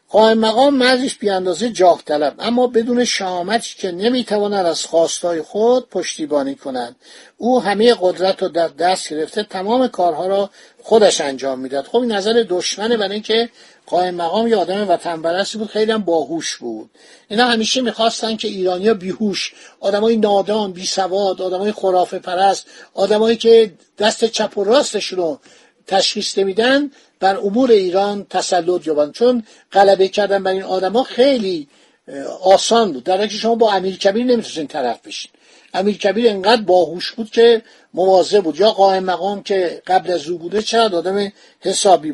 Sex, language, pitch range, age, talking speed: male, Persian, 180-225 Hz, 50-69, 150 wpm